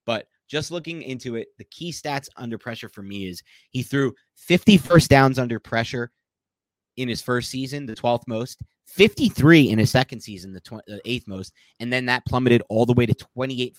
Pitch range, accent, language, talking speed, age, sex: 100-130 Hz, American, English, 195 wpm, 30-49, male